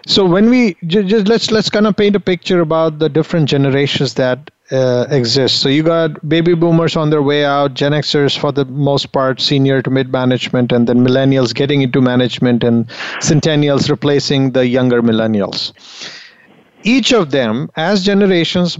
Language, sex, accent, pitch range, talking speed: English, male, Indian, 135-180 Hz, 175 wpm